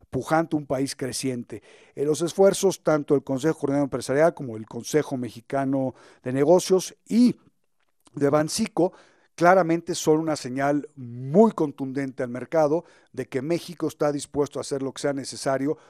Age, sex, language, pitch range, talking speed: 50-69, male, Spanish, 130-160 Hz, 145 wpm